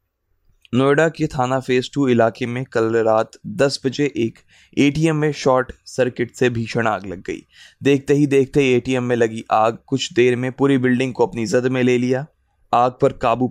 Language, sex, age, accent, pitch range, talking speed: Hindi, male, 20-39, native, 115-135 Hz, 185 wpm